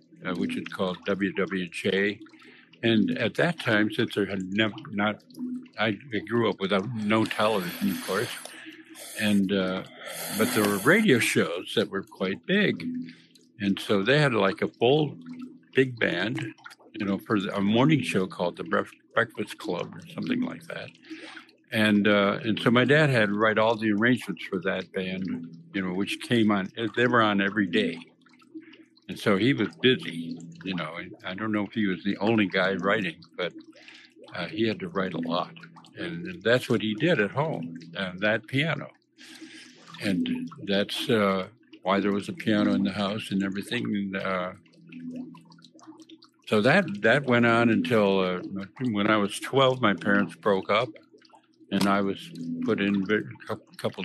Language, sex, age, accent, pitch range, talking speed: English, male, 60-79, American, 100-150 Hz, 175 wpm